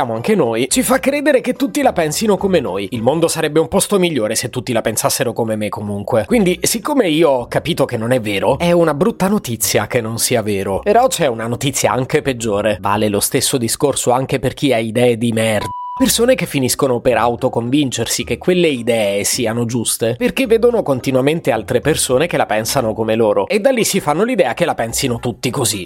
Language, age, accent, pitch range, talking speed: Italian, 30-49, native, 120-175 Hz, 205 wpm